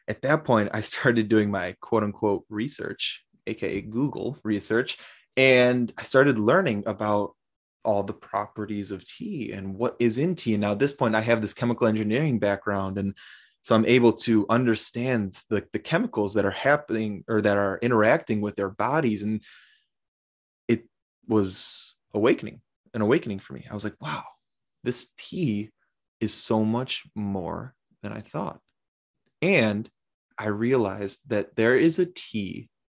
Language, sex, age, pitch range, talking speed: English, male, 20-39, 105-120 Hz, 155 wpm